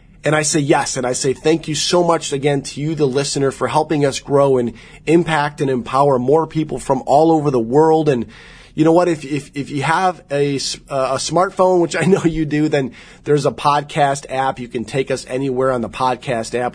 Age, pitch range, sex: 30-49, 130-165 Hz, male